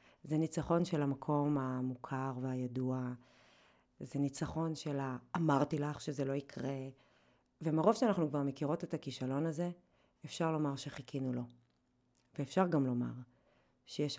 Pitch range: 125-155 Hz